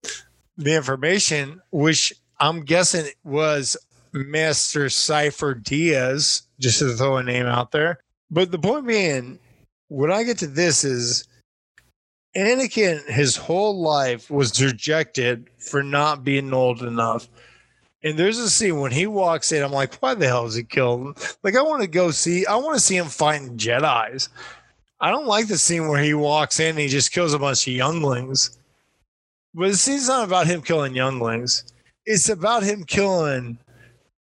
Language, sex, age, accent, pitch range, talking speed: English, male, 20-39, American, 135-185 Hz, 165 wpm